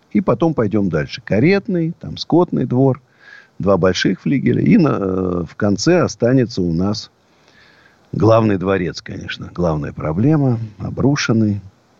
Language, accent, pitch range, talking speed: Russian, native, 95-135 Hz, 120 wpm